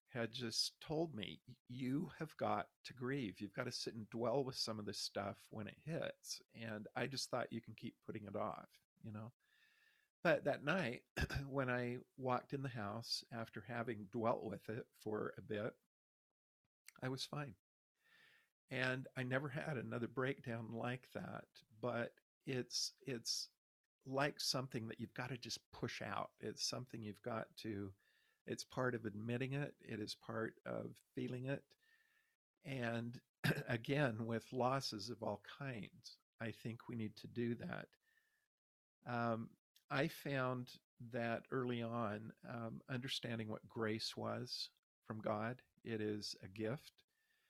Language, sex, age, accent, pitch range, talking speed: English, male, 50-69, American, 115-140 Hz, 155 wpm